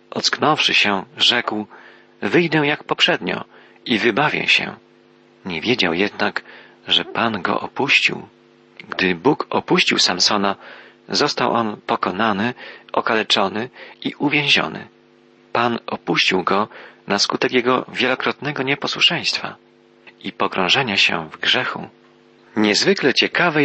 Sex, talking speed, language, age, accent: male, 105 wpm, Polish, 40-59, native